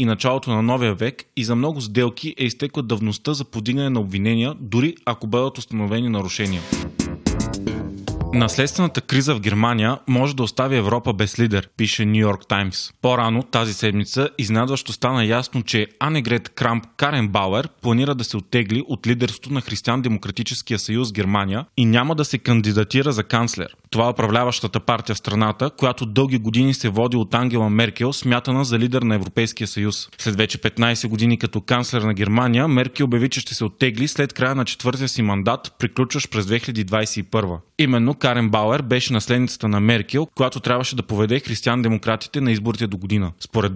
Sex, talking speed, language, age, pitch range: male, 170 wpm, Bulgarian, 20-39, 110-130 Hz